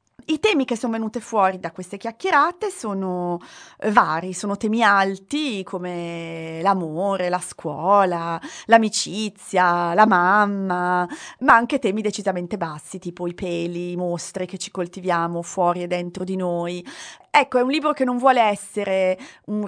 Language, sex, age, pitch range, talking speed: Italian, female, 30-49, 175-230 Hz, 145 wpm